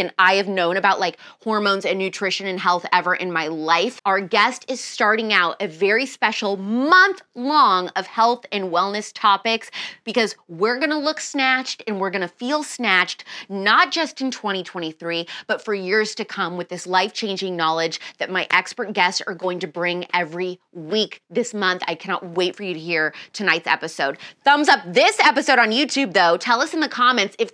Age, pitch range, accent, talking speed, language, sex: 20-39, 185-290 Hz, American, 195 wpm, English, female